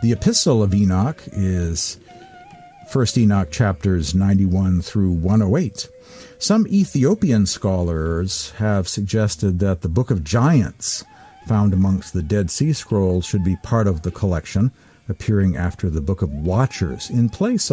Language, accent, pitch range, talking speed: English, American, 90-120 Hz, 140 wpm